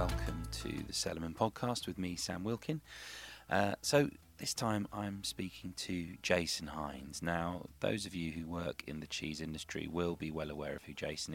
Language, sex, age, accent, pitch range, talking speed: English, male, 30-49, British, 75-90 Hz, 185 wpm